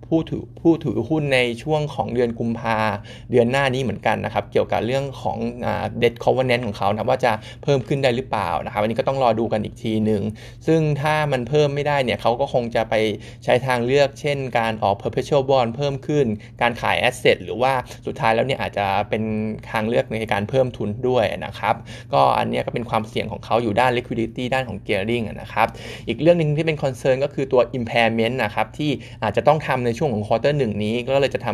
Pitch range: 110-135 Hz